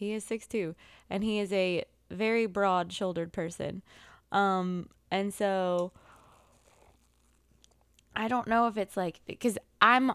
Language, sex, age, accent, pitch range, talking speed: English, female, 20-39, American, 160-195 Hz, 125 wpm